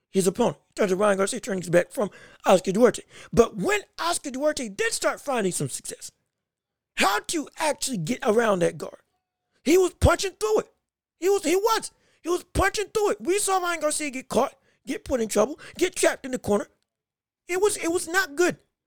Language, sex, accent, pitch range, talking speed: English, male, American, 255-355 Hz, 200 wpm